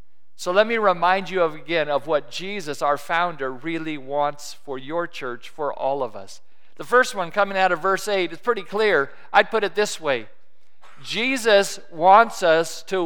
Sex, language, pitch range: male, English, 175-225 Hz